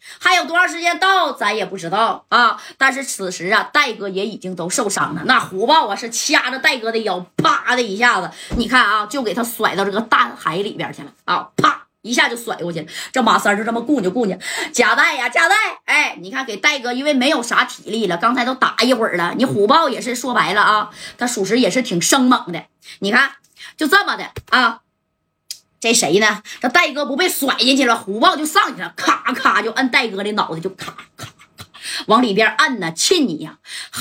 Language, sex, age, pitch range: Chinese, female, 20-39, 200-285 Hz